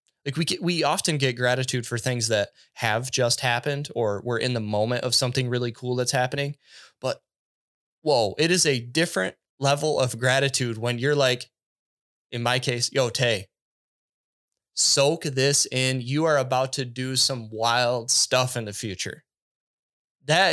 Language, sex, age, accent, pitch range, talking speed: English, male, 20-39, American, 125-150 Hz, 165 wpm